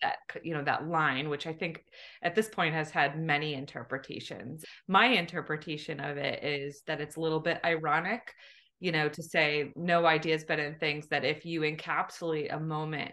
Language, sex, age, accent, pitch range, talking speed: English, female, 20-39, American, 150-180 Hz, 185 wpm